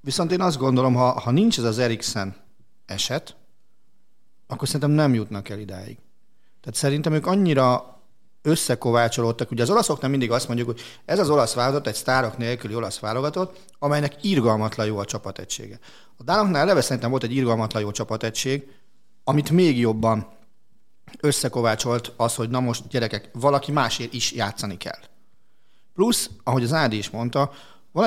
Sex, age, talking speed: male, 40-59, 160 wpm